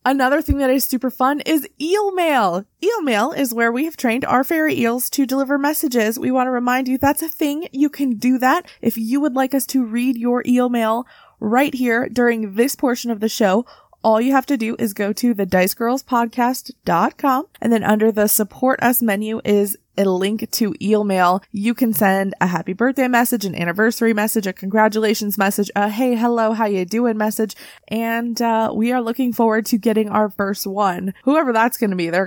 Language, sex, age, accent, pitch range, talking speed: English, female, 20-39, American, 200-255 Hz, 205 wpm